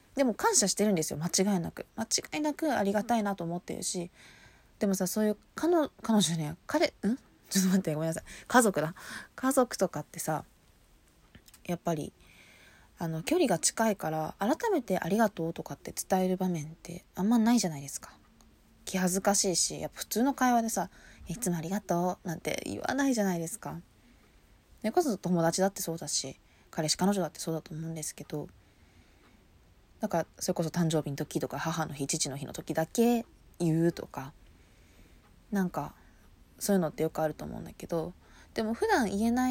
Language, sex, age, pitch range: Japanese, female, 20-39, 160-235 Hz